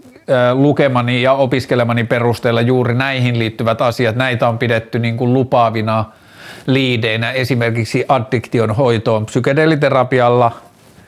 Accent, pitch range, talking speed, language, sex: native, 120-135 Hz, 105 wpm, Finnish, male